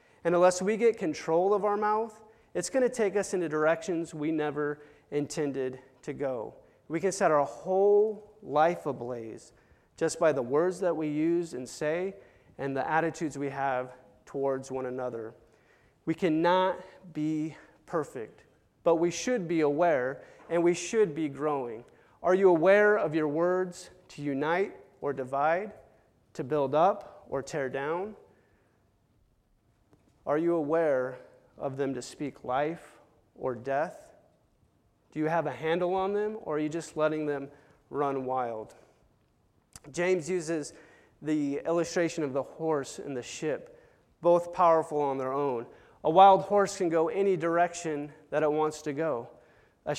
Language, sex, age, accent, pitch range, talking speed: English, male, 30-49, American, 140-175 Hz, 155 wpm